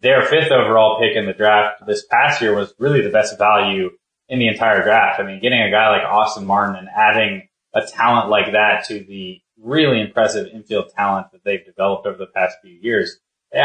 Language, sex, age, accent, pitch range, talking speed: English, male, 20-39, American, 100-120 Hz, 210 wpm